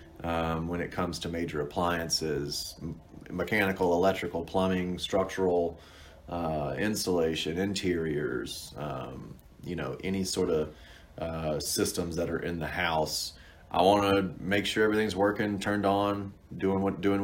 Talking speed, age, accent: 140 wpm, 30-49, American